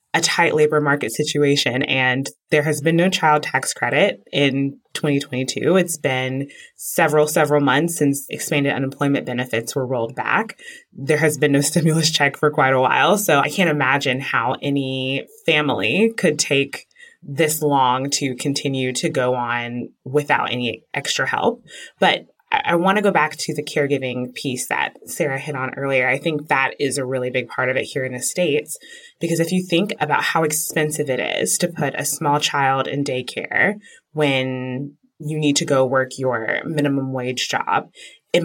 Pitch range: 130-155 Hz